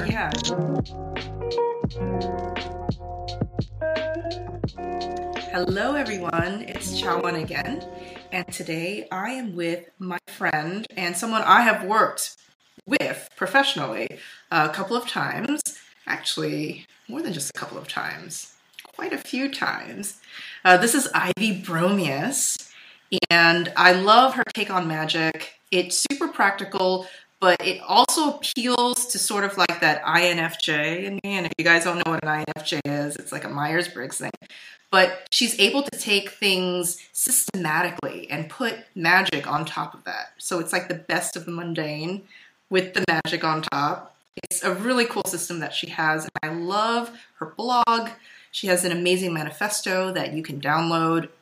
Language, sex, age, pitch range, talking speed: English, female, 20-39, 165-210 Hz, 145 wpm